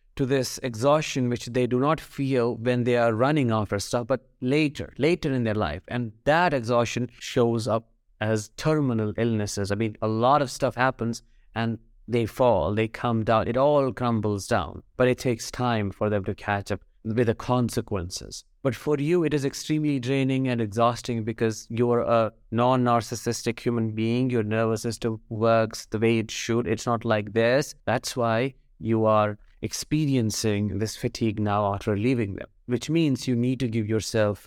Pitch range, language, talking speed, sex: 110-130 Hz, English, 180 wpm, male